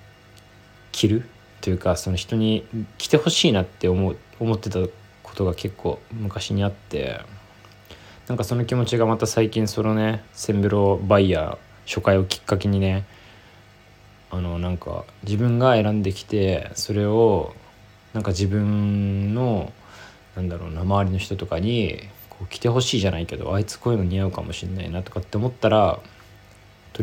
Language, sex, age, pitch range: Japanese, male, 20-39, 95-110 Hz